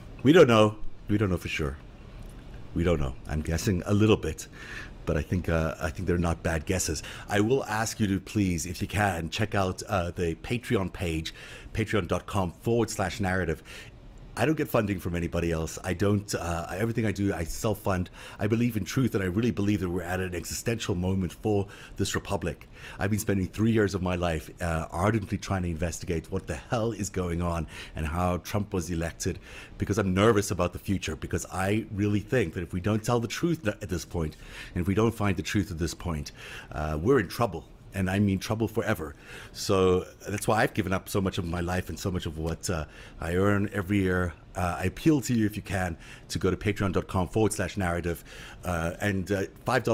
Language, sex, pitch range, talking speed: English, male, 85-105 Hz, 215 wpm